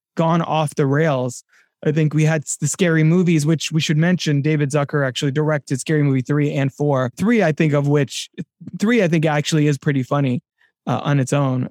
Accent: American